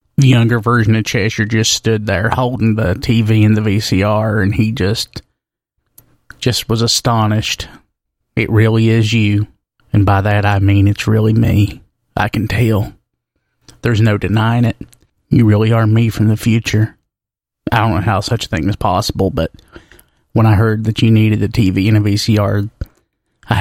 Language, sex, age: English, male, 30-49